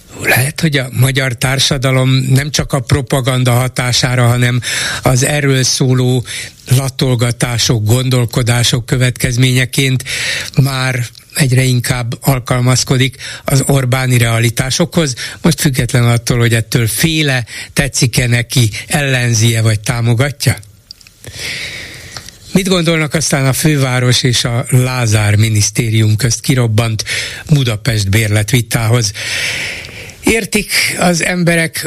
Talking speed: 95 wpm